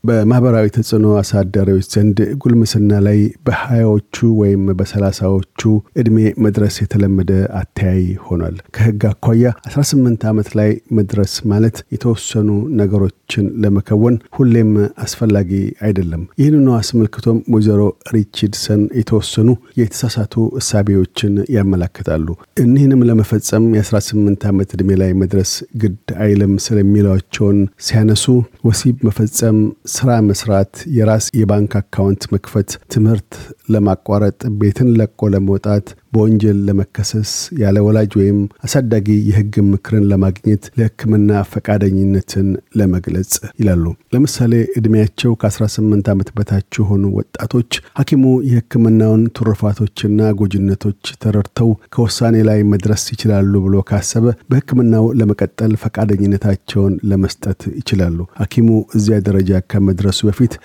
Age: 50-69